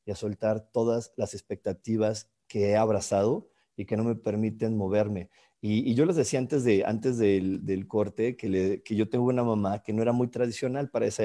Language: Spanish